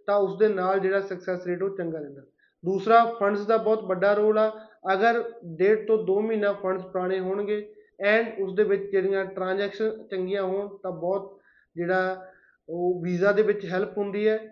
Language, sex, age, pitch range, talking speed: Punjabi, male, 20-39, 190-215 Hz, 175 wpm